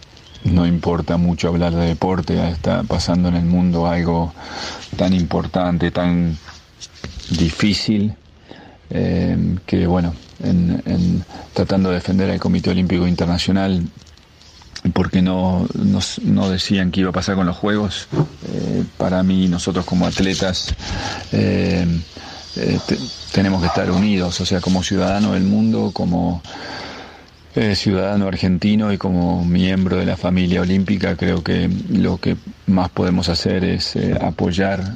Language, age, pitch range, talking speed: Spanish, 40-59, 85-95 Hz, 135 wpm